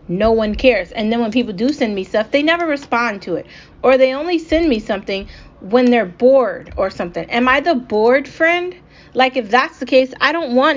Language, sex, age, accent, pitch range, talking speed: English, female, 20-39, American, 210-260 Hz, 225 wpm